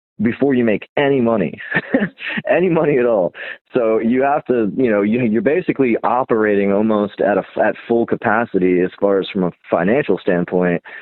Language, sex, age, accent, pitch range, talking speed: English, male, 20-39, American, 85-105 Hz, 170 wpm